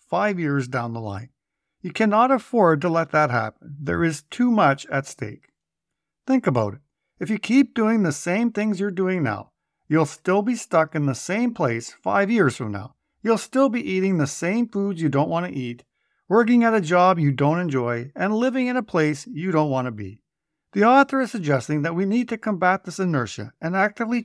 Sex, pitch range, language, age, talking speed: male, 145-220 Hz, English, 50-69, 210 wpm